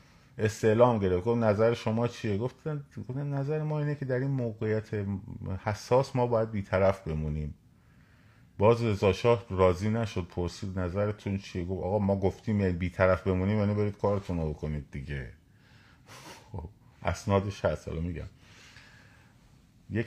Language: Persian